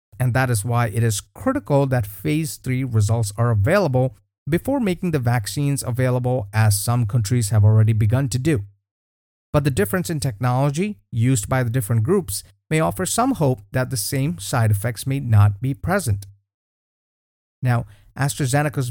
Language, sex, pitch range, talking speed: English, male, 105-140 Hz, 160 wpm